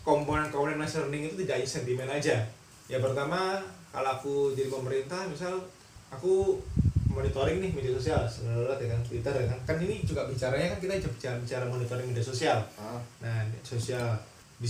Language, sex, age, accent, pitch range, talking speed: Indonesian, male, 20-39, native, 125-180 Hz, 165 wpm